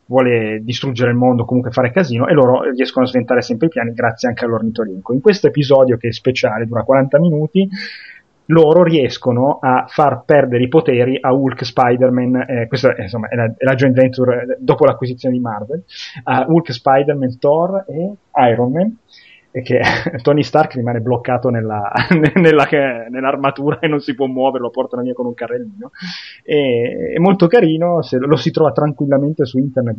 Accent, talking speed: native, 170 wpm